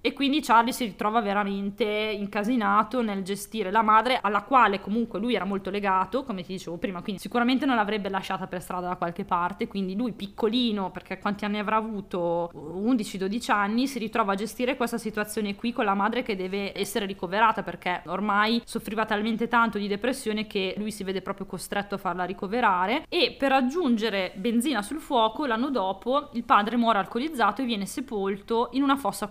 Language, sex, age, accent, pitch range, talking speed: Italian, female, 20-39, native, 200-245 Hz, 185 wpm